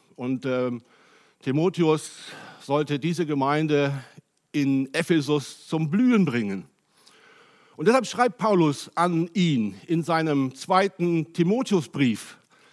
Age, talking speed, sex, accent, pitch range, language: 60-79, 100 wpm, male, German, 150-200 Hz, German